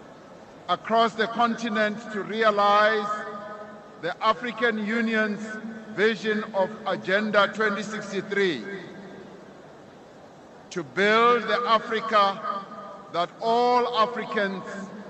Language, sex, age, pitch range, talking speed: English, male, 50-69, 195-225 Hz, 75 wpm